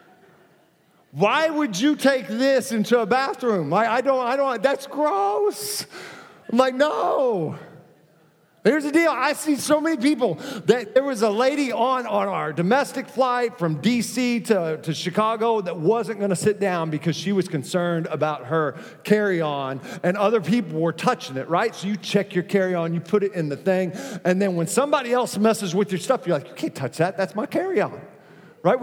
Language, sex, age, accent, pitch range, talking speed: English, male, 40-59, American, 185-250 Hz, 190 wpm